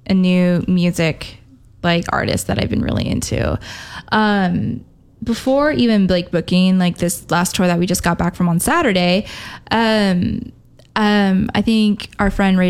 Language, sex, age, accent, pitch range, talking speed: English, female, 20-39, American, 175-200 Hz, 160 wpm